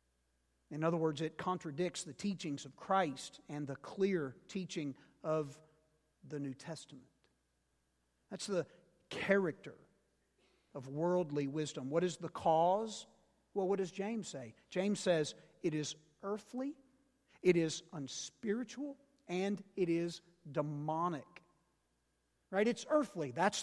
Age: 50-69